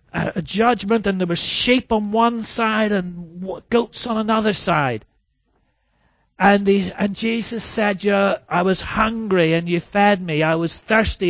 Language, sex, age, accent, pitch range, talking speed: English, male, 40-59, British, 165-230 Hz, 165 wpm